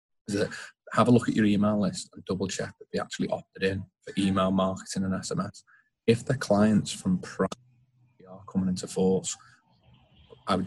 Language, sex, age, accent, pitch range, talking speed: English, male, 30-49, British, 95-100 Hz, 185 wpm